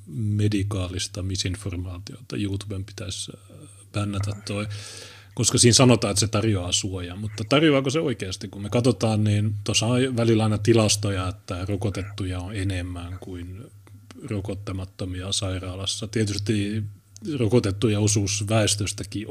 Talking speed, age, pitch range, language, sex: 110 wpm, 30-49, 100-115 Hz, Finnish, male